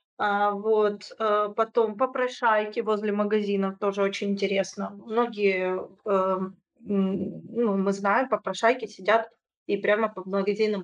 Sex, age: female, 20-39